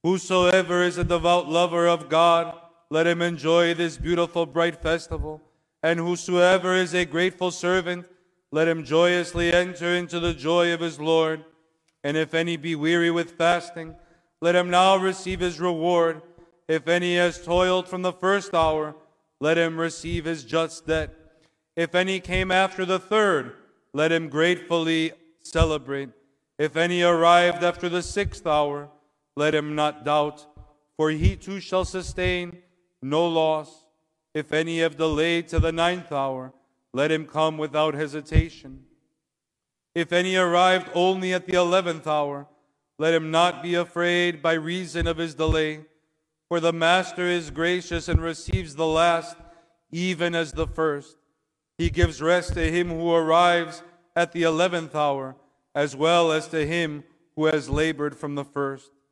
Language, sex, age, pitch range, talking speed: English, male, 40-59, 155-175 Hz, 155 wpm